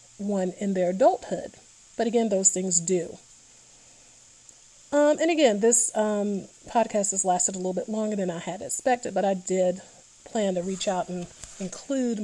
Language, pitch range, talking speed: English, 190-230 Hz, 165 wpm